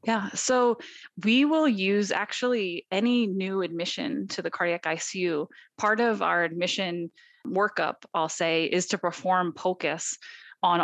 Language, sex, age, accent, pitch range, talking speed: English, female, 20-39, American, 170-210 Hz, 140 wpm